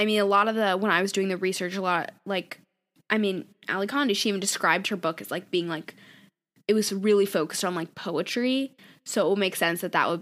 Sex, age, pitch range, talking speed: female, 10-29, 190-235 Hz, 250 wpm